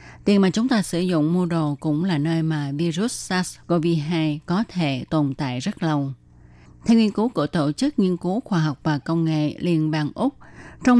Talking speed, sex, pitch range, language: 200 wpm, female, 155-195 Hz, Vietnamese